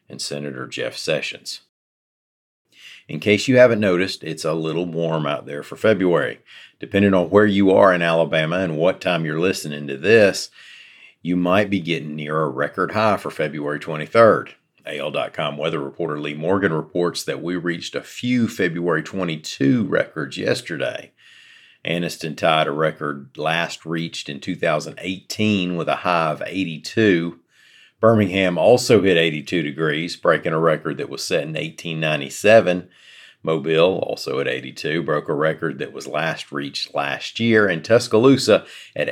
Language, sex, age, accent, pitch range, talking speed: English, male, 40-59, American, 80-100 Hz, 150 wpm